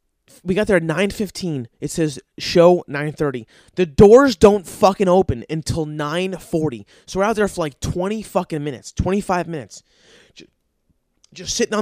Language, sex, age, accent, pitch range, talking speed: English, male, 20-39, American, 140-190 Hz, 170 wpm